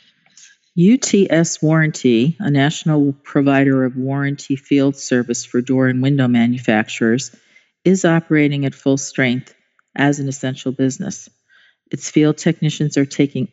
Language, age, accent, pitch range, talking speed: English, 50-69, American, 125-150 Hz, 125 wpm